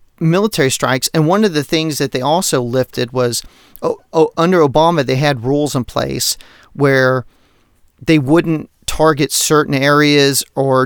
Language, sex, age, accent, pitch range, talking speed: English, male, 40-59, American, 130-150 Hz, 155 wpm